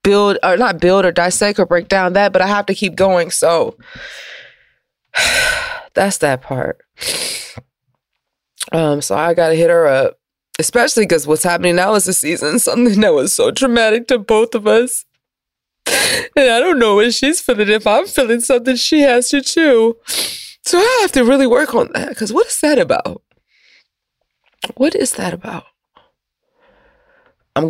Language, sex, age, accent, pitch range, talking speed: English, female, 20-39, American, 185-290 Hz, 170 wpm